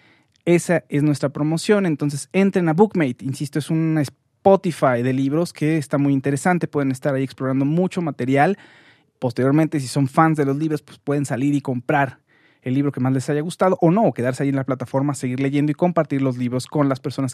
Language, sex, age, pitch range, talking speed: Spanish, male, 30-49, 130-160 Hz, 205 wpm